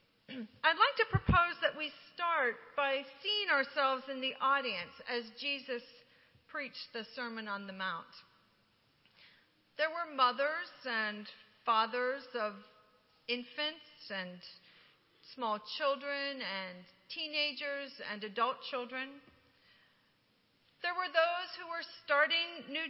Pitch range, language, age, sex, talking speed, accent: 245-315 Hz, English, 40-59, female, 115 wpm, American